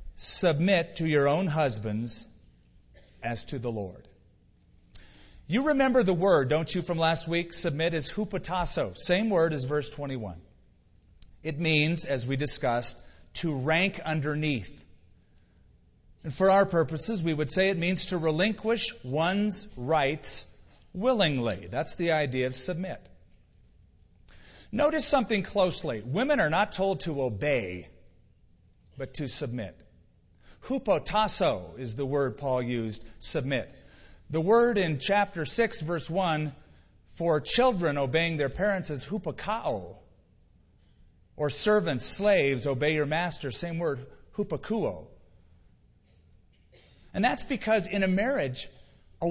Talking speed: 125 wpm